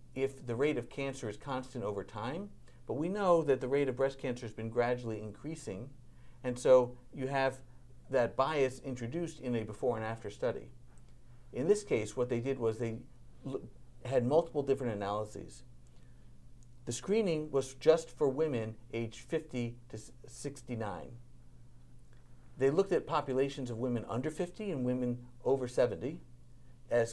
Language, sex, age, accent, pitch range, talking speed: English, male, 50-69, American, 120-140 Hz, 155 wpm